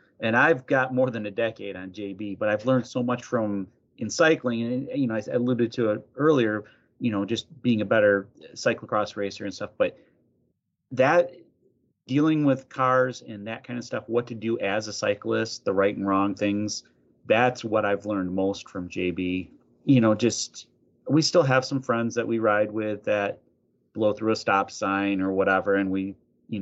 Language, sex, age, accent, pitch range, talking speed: English, male, 30-49, American, 100-125 Hz, 195 wpm